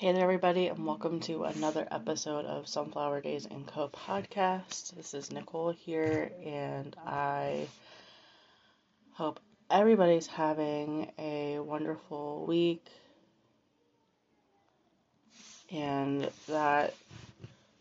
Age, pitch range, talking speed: 20-39, 145-180 Hz, 95 wpm